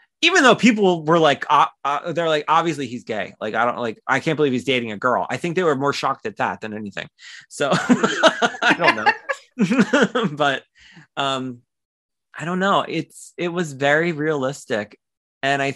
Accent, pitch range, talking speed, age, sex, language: American, 140-225 Hz, 185 wpm, 20-39, male, English